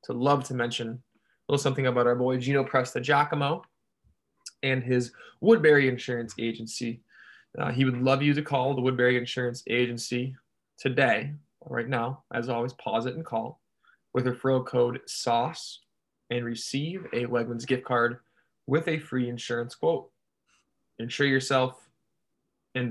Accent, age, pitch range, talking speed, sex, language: American, 20-39, 115-135 Hz, 145 wpm, male, English